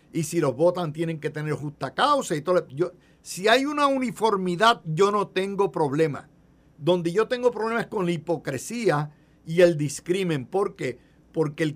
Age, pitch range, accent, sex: 50-69, 150-220 Hz, Mexican, male